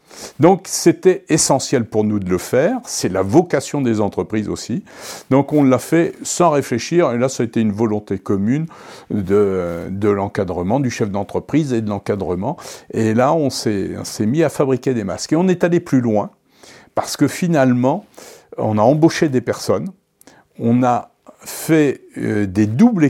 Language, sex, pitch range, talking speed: French, male, 115-165 Hz, 175 wpm